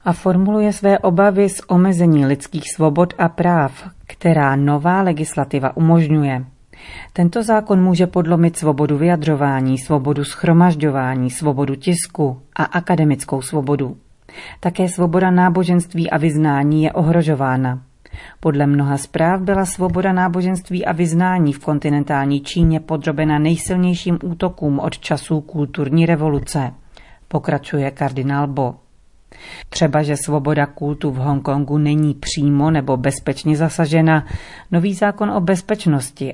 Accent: native